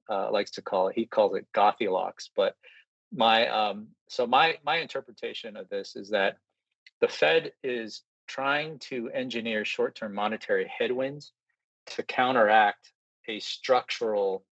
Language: English